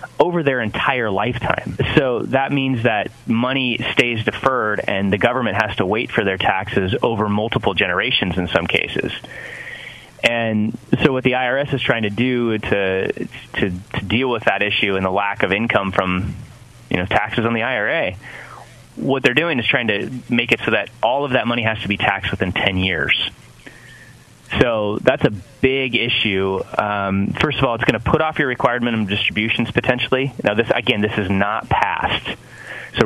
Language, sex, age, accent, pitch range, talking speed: English, male, 30-49, American, 100-125 Hz, 185 wpm